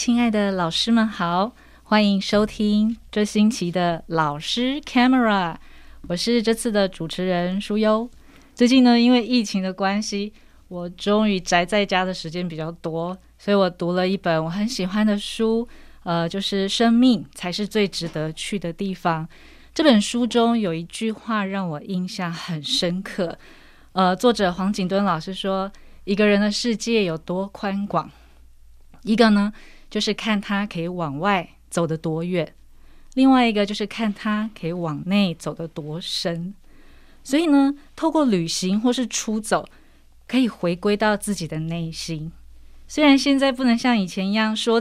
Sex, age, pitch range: female, 20-39, 175-230 Hz